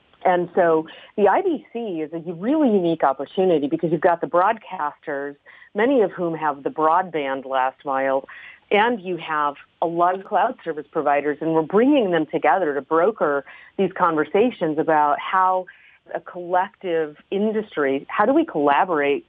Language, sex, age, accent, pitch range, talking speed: English, female, 40-59, American, 145-185 Hz, 150 wpm